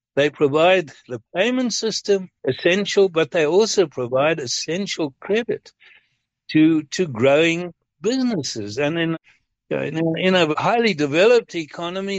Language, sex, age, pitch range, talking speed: English, male, 60-79, 150-200 Hz, 135 wpm